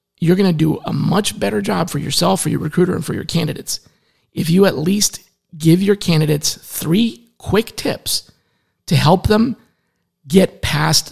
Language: English